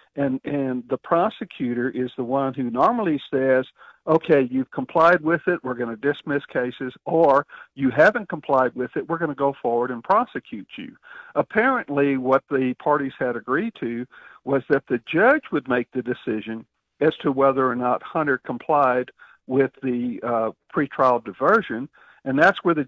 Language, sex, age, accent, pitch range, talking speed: English, male, 50-69, American, 125-170 Hz, 170 wpm